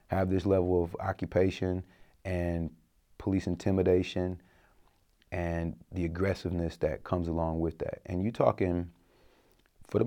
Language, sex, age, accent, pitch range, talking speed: English, male, 30-49, American, 90-100 Hz, 125 wpm